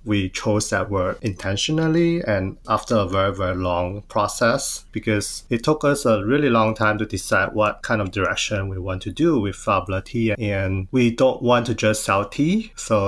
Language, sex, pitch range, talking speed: English, male, 100-120 Hz, 195 wpm